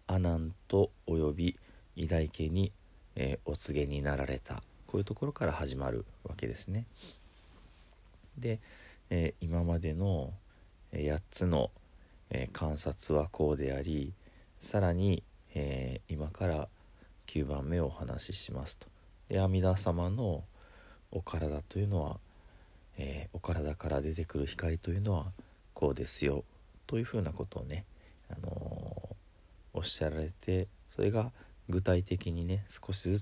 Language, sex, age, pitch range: Japanese, male, 40-59, 80-95 Hz